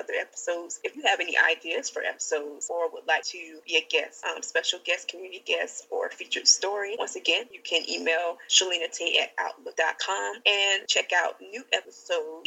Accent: American